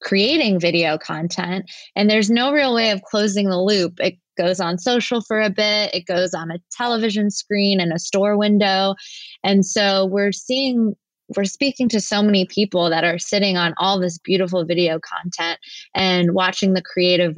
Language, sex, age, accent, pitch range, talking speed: English, female, 20-39, American, 175-205 Hz, 180 wpm